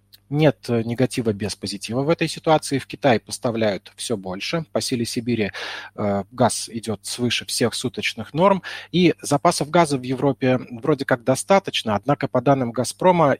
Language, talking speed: Russian, 150 wpm